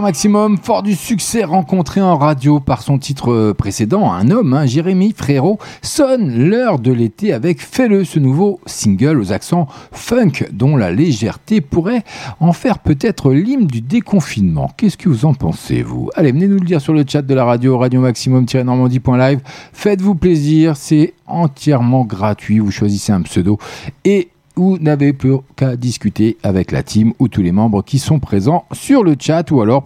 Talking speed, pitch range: 175 wpm, 125-180 Hz